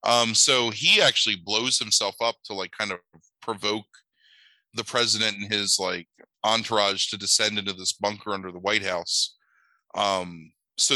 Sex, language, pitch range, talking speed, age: male, English, 90-110 Hz, 160 wpm, 20-39